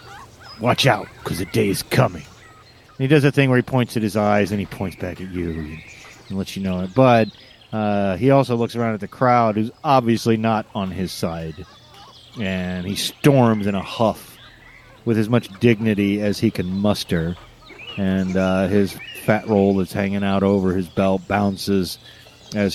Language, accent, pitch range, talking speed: English, American, 95-115 Hz, 185 wpm